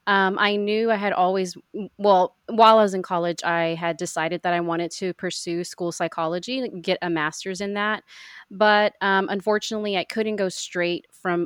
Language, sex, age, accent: English, female, 30-49, American